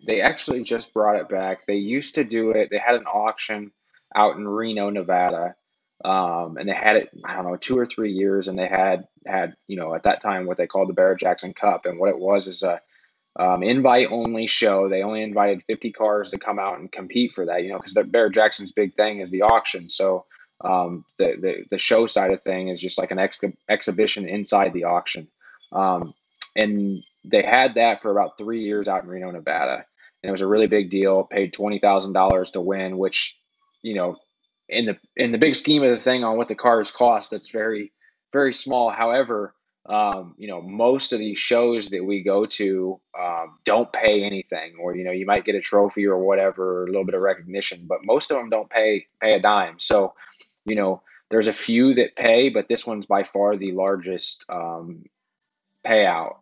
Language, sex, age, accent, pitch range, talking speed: English, male, 20-39, American, 95-115 Hz, 210 wpm